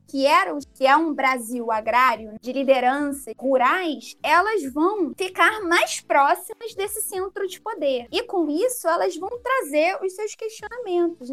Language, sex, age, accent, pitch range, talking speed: Portuguese, female, 20-39, Brazilian, 260-345 Hz, 150 wpm